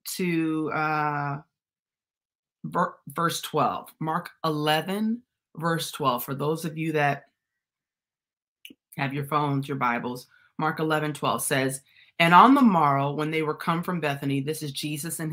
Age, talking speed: 30-49, 145 wpm